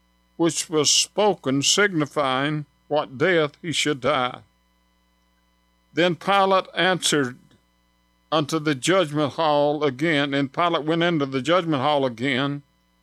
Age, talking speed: 50-69, 115 wpm